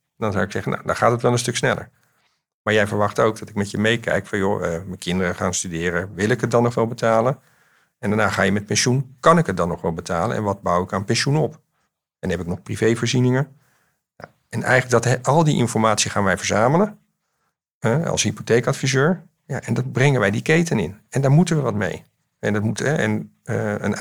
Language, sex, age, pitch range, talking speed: Dutch, male, 50-69, 105-130 Hz, 220 wpm